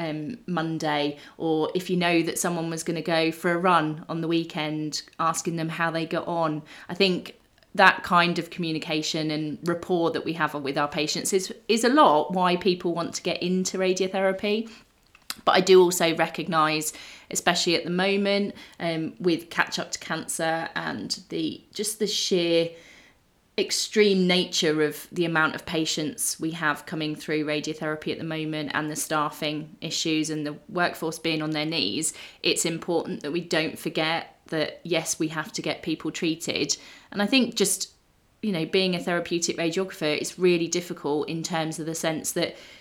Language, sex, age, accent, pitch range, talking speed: English, female, 30-49, British, 155-180 Hz, 180 wpm